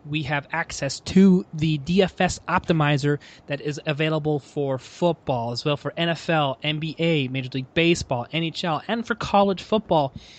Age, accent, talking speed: 20-39, American, 145 wpm